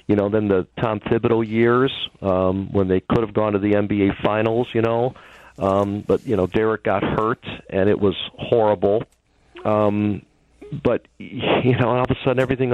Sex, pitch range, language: male, 100-130 Hz, English